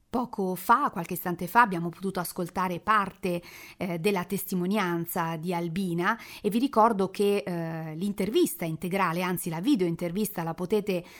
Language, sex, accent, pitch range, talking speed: Italian, female, native, 180-225 Hz, 145 wpm